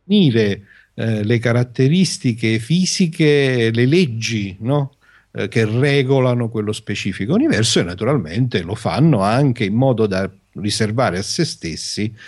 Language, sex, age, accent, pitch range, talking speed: Italian, male, 50-69, native, 95-125 Hz, 125 wpm